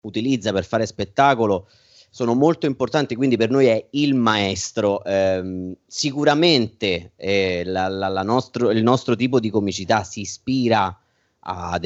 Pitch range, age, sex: 95-115 Hz, 30-49, male